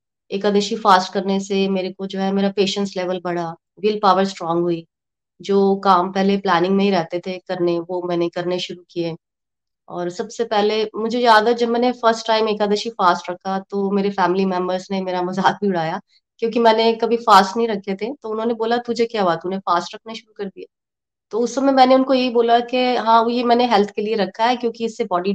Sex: female